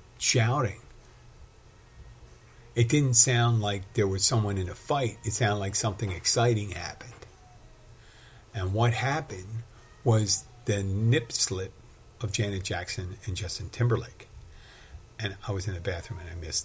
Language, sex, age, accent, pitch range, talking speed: English, male, 50-69, American, 105-125 Hz, 140 wpm